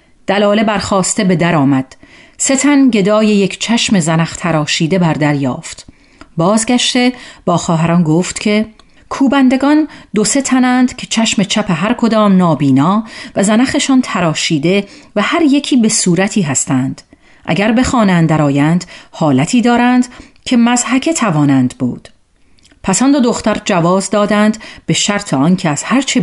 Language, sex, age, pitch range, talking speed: Persian, female, 40-59, 170-235 Hz, 130 wpm